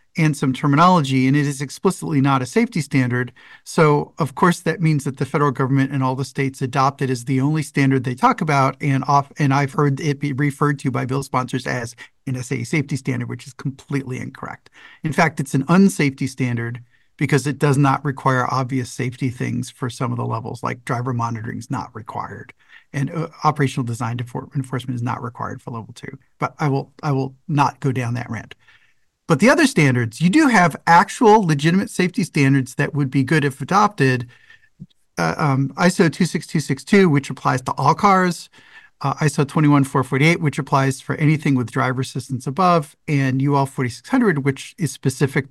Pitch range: 130-160 Hz